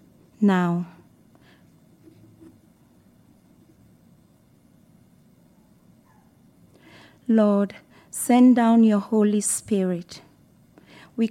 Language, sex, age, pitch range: English, female, 40-59, 180-225 Hz